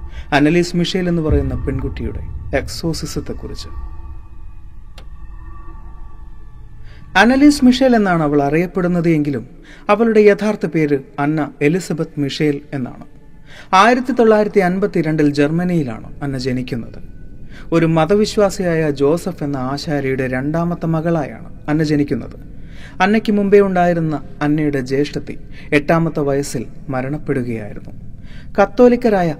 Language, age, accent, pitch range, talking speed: Malayalam, 40-59, native, 130-175 Hz, 85 wpm